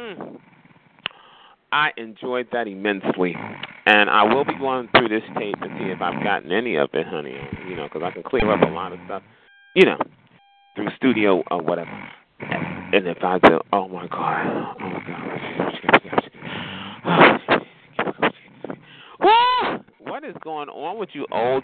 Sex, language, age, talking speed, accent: male, English, 40-59, 155 wpm, American